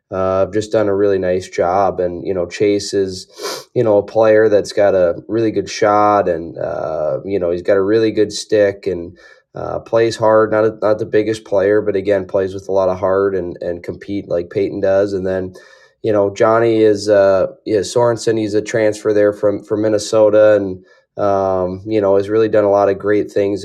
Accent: American